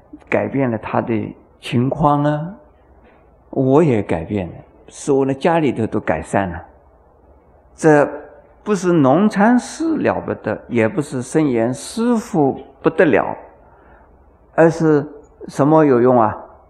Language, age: Chinese, 50-69